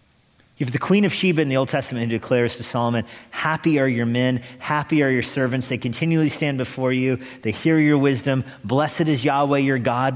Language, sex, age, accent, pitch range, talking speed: English, male, 40-59, American, 120-140 Hz, 215 wpm